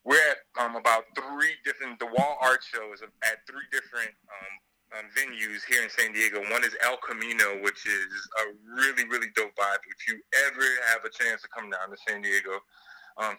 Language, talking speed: English, 200 wpm